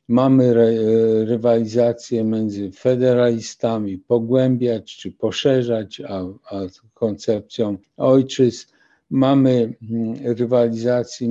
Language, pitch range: Polish, 110-125 Hz